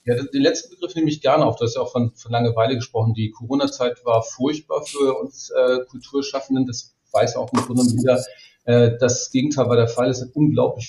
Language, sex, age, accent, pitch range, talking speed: German, male, 40-59, German, 120-135 Hz, 215 wpm